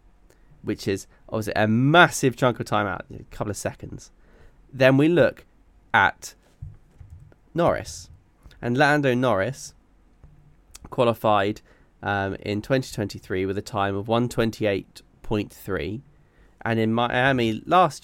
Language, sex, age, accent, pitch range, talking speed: English, male, 10-29, British, 105-130 Hz, 115 wpm